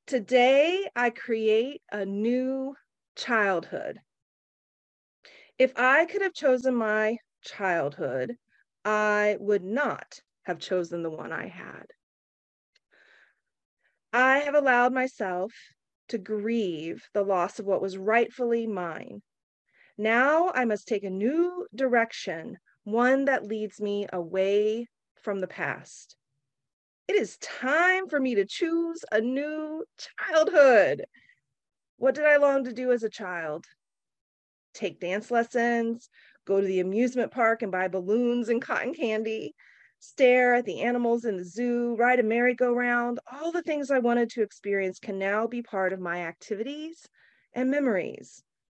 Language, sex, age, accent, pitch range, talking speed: English, female, 30-49, American, 205-280 Hz, 135 wpm